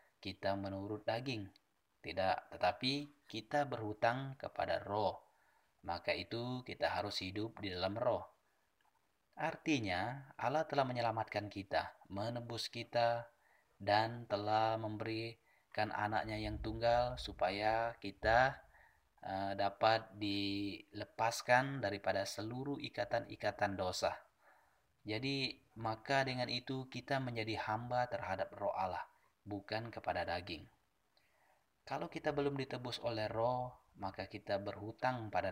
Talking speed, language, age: 105 wpm, Malay, 20-39